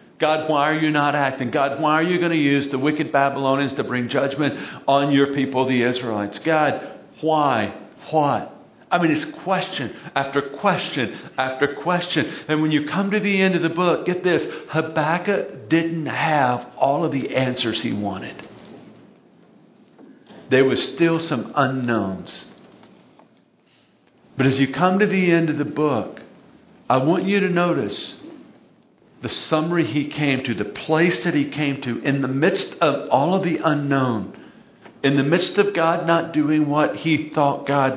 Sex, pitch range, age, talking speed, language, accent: male, 130-165 Hz, 50-69, 170 wpm, English, American